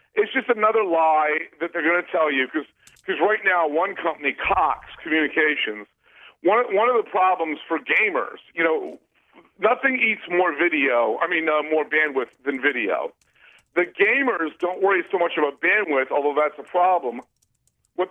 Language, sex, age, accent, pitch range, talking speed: English, male, 50-69, American, 155-215 Hz, 170 wpm